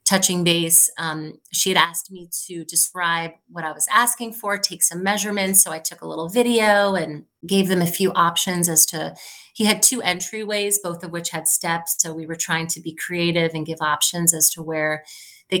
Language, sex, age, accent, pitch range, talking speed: English, female, 30-49, American, 160-185 Hz, 210 wpm